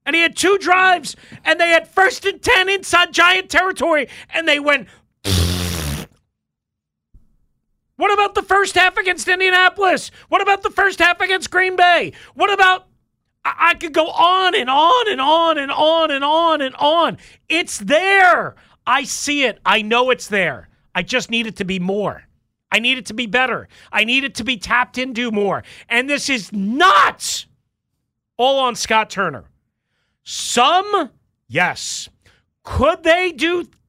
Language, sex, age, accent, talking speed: English, male, 40-59, American, 165 wpm